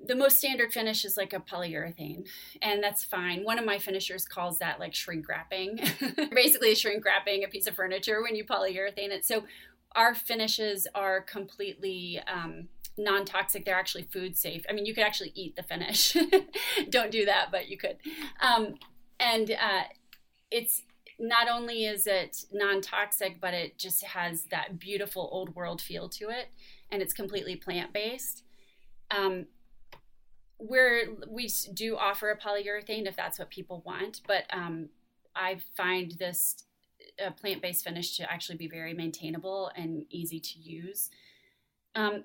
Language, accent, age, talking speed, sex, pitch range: English, American, 30-49, 155 wpm, female, 185-225 Hz